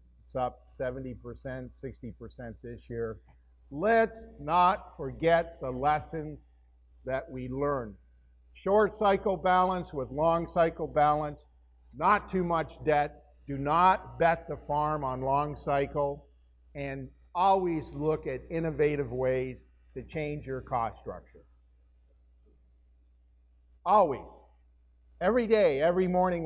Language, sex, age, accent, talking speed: English, male, 50-69, American, 110 wpm